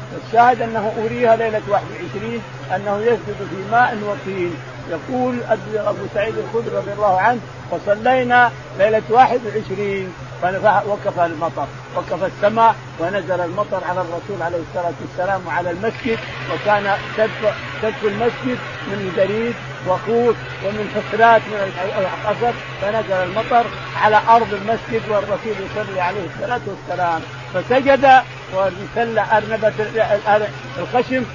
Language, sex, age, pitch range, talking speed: Arabic, male, 50-69, 160-220 Hz, 110 wpm